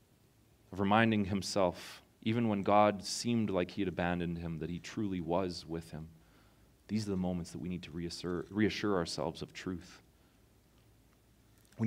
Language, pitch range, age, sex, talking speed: English, 90-115 Hz, 30-49, male, 160 wpm